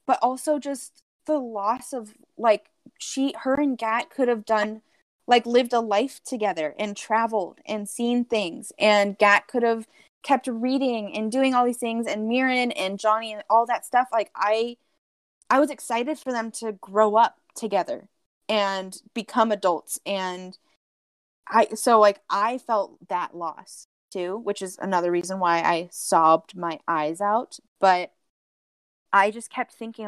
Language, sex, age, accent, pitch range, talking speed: English, female, 10-29, American, 205-255 Hz, 160 wpm